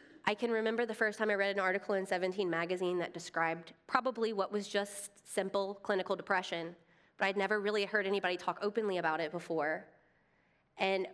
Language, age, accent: English, 20-39, American